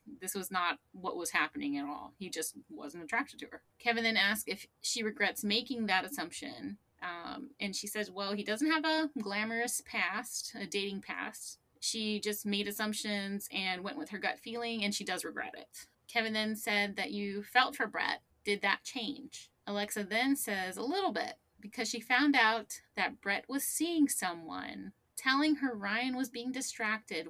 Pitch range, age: 195-255 Hz, 20-39